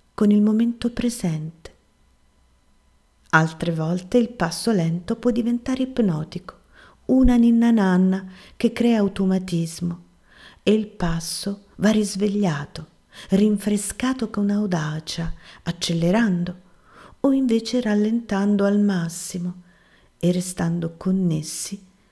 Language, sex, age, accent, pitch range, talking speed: Italian, female, 40-59, native, 160-210 Hz, 95 wpm